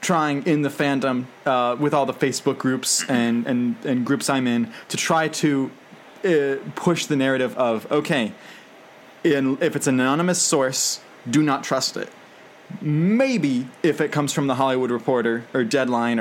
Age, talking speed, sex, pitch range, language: 20-39, 165 wpm, male, 125-155 Hz, English